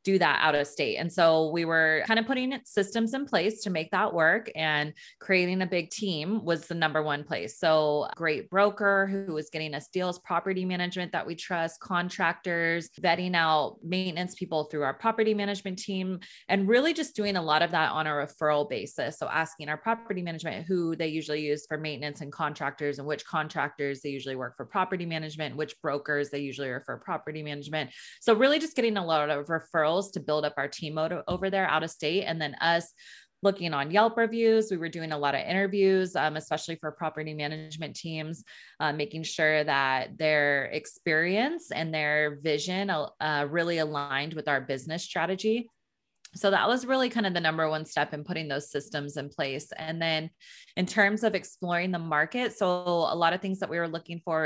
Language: English